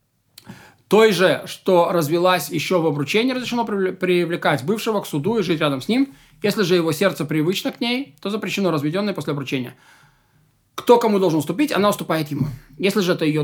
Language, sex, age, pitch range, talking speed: Russian, male, 20-39, 150-200 Hz, 180 wpm